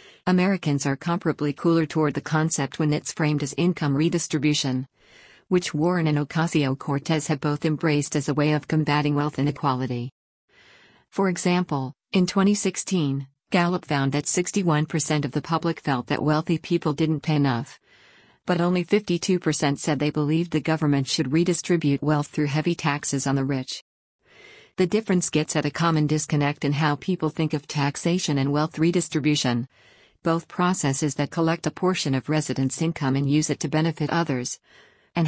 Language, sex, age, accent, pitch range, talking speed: English, female, 50-69, American, 145-170 Hz, 160 wpm